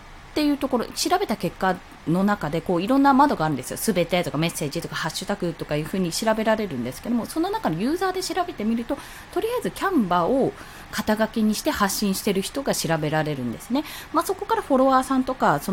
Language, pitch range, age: Japanese, 175-280 Hz, 20-39